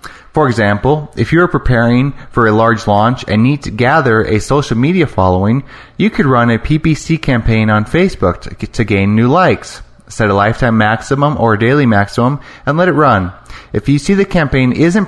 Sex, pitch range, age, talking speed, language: male, 105-135 Hz, 30-49, 195 wpm, English